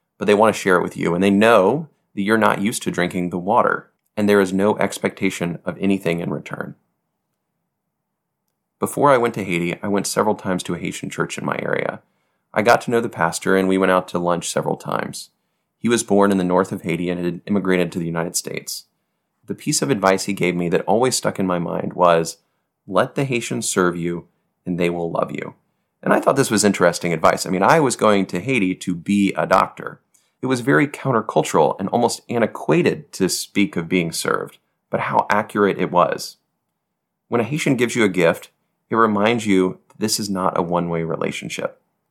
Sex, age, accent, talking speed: male, 30-49, American, 210 wpm